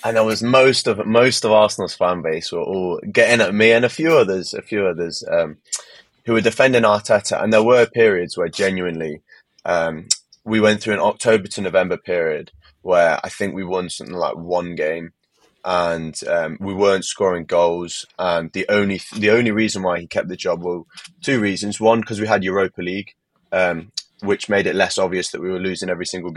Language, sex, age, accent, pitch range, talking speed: English, male, 20-39, British, 90-110 Hz, 205 wpm